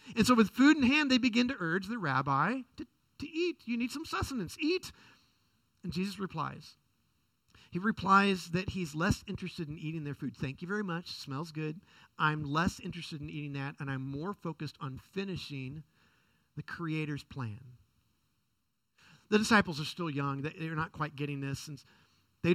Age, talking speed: 50-69, 175 wpm